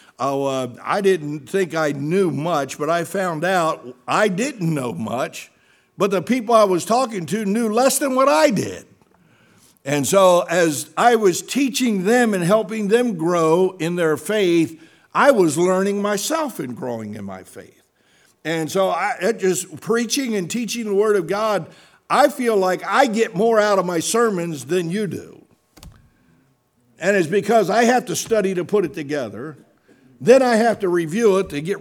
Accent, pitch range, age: American, 165-230 Hz, 60-79